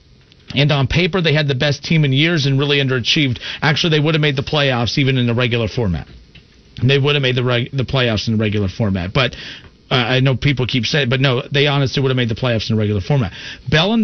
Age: 40-59